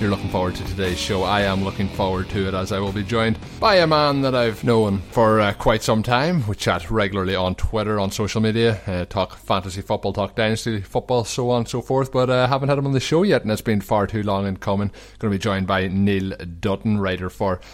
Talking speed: 255 wpm